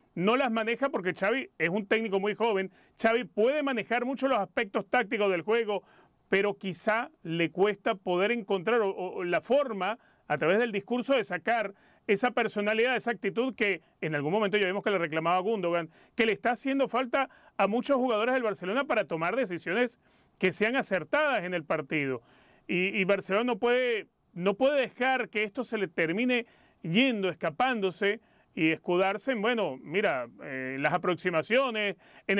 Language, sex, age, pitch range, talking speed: Spanish, male, 30-49, 185-240 Hz, 170 wpm